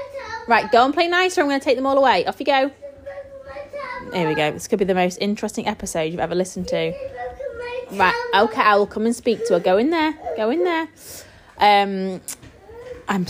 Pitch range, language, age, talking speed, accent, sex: 175-250 Hz, English, 20-39, 210 wpm, British, female